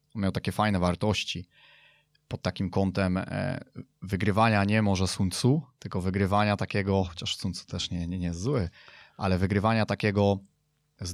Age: 20-39